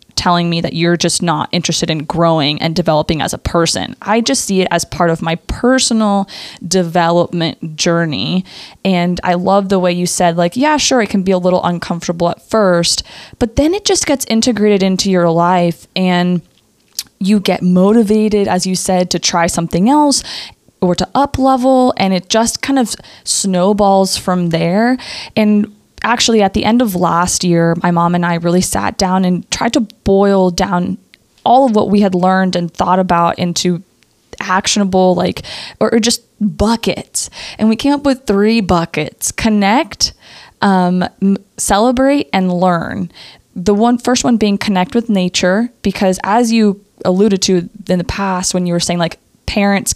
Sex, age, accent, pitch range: female, 20-39, American, 175-215 Hz